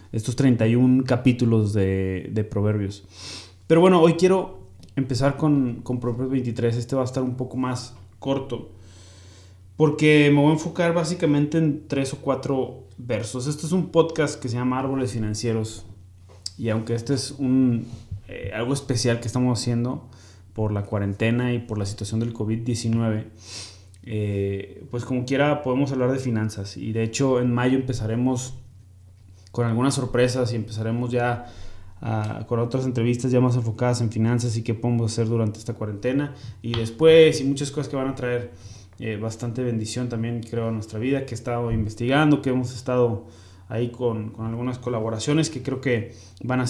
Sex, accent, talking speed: male, Mexican, 170 wpm